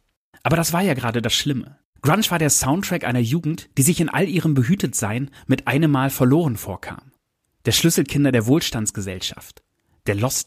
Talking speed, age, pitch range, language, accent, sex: 170 wpm, 30-49, 115-150 Hz, German, German, male